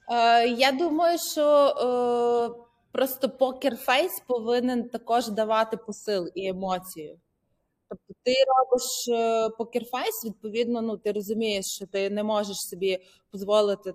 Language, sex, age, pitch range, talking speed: Ukrainian, female, 20-39, 185-240 Hz, 110 wpm